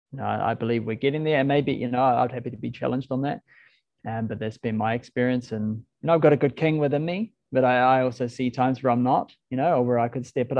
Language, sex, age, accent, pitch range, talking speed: English, male, 20-39, Australian, 115-135 Hz, 295 wpm